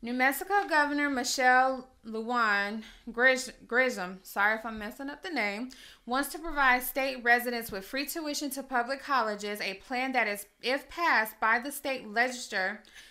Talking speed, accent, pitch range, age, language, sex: 155 wpm, American, 215-265 Hz, 20-39, English, female